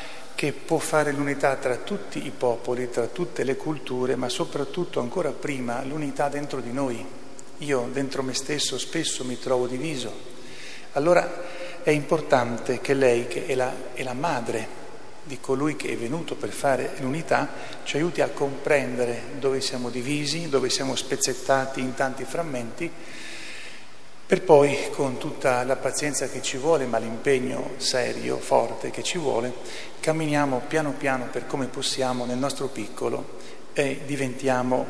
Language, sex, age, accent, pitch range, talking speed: Italian, male, 40-59, native, 125-150 Hz, 150 wpm